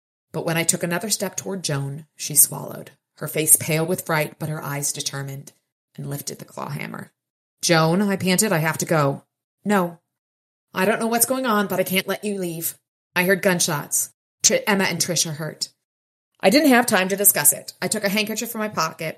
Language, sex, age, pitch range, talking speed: English, female, 30-49, 150-185 Hz, 205 wpm